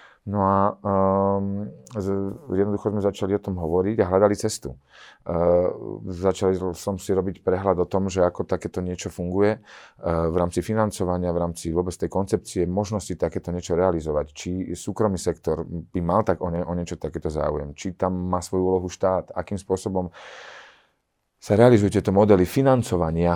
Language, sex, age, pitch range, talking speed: Slovak, male, 40-59, 80-95 Hz, 165 wpm